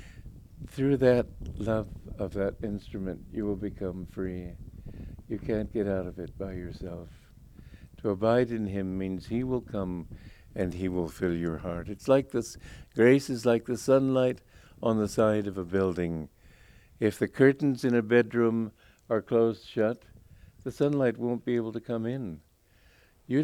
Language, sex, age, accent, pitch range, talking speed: English, male, 60-79, American, 90-120 Hz, 165 wpm